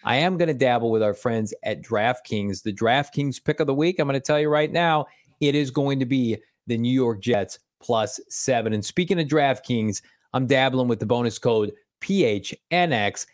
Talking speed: 205 wpm